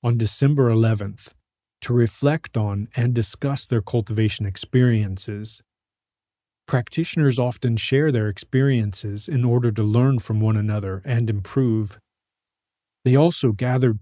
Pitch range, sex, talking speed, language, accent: 105-130 Hz, male, 120 wpm, English, American